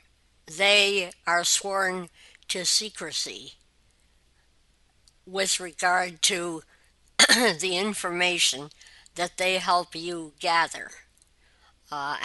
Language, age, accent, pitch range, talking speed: English, 60-79, American, 150-180 Hz, 80 wpm